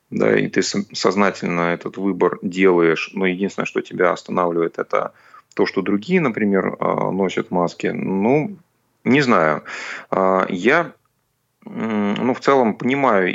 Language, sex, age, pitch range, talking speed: Russian, male, 30-49, 90-100 Hz, 120 wpm